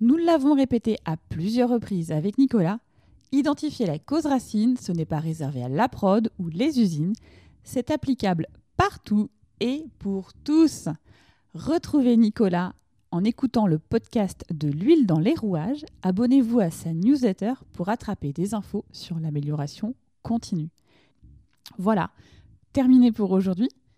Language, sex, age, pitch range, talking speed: French, female, 20-39, 180-260 Hz, 135 wpm